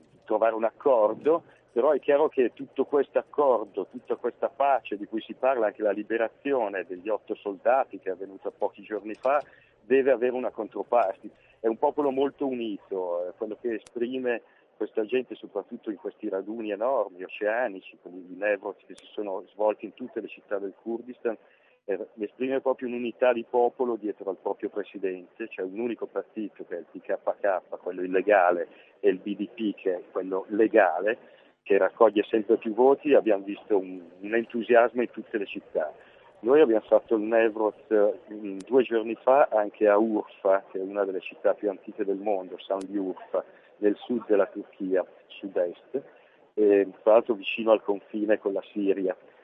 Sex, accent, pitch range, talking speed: male, native, 105-150 Hz, 170 wpm